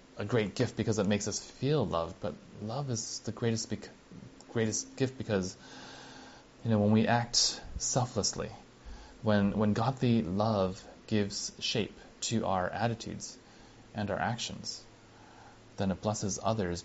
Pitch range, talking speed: 95-115 Hz, 140 wpm